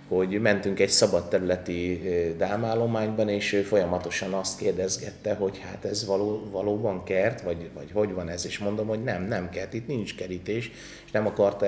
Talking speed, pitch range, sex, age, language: 170 wpm, 90-110 Hz, male, 30-49, Hungarian